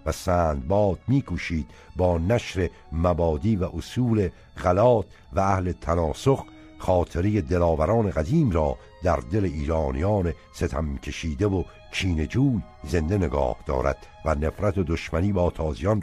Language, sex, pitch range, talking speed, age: Persian, male, 85-115 Hz, 125 wpm, 60-79